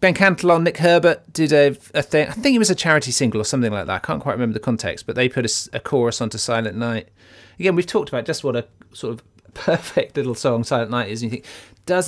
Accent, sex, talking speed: British, male, 265 wpm